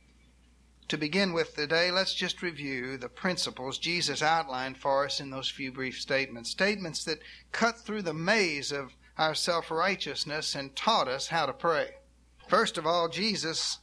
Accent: American